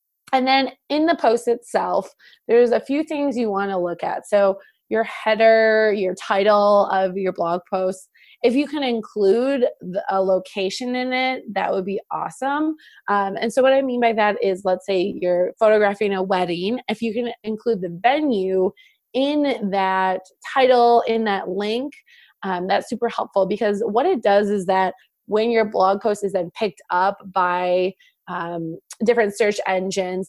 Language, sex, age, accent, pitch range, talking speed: English, female, 20-39, American, 190-240 Hz, 170 wpm